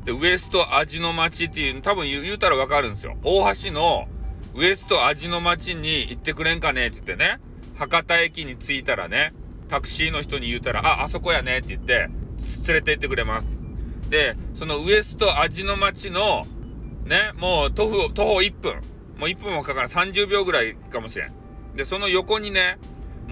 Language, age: Japanese, 40-59